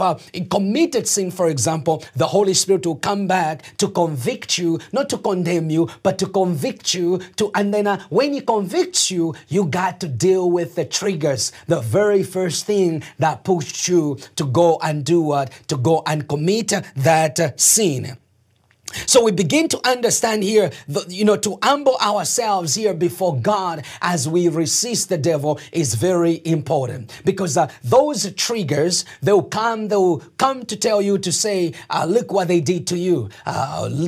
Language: English